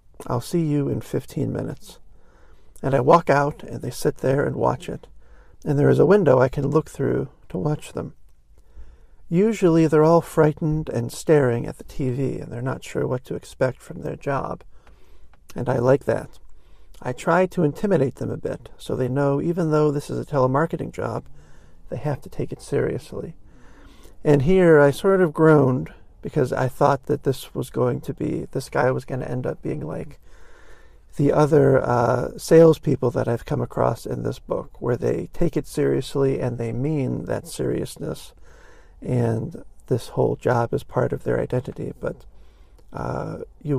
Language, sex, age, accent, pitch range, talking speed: English, male, 50-69, American, 125-160 Hz, 180 wpm